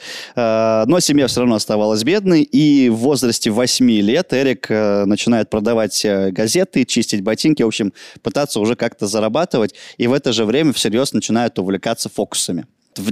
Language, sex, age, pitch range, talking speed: Russian, male, 20-39, 110-135 Hz, 150 wpm